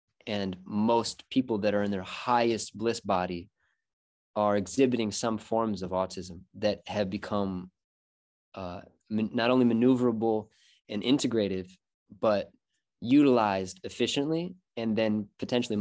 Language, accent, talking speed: English, American, 120 wpm